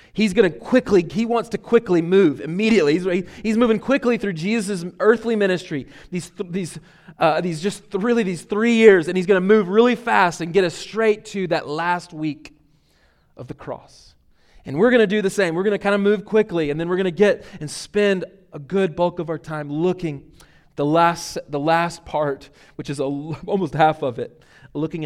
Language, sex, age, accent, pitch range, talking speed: English, male, 30-49, American, 145-185 Hz, 205 wpm